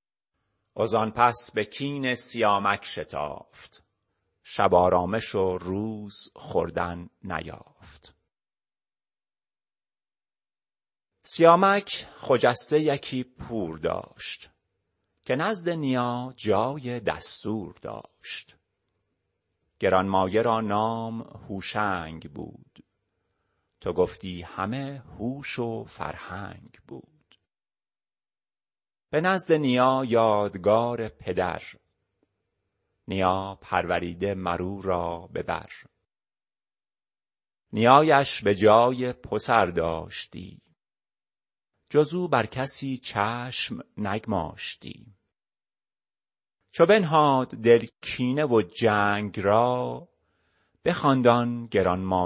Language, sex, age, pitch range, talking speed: Persian, male, 40-59, 95-125 Hz, 75 wpm